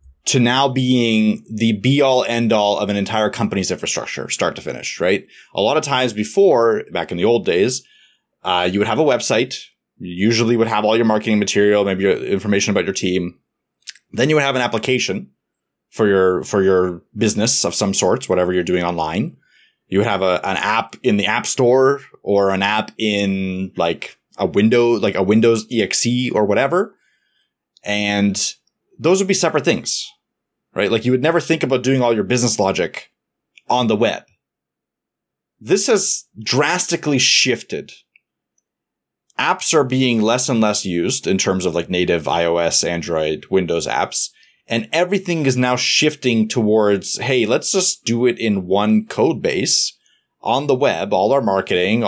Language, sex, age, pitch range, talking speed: English, male, 20-39, 100-125 Hz, 170 wpm